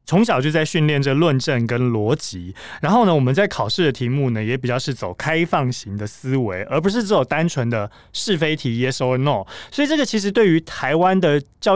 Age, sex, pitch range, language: 20-39, male, 125-175 Hz, Chinese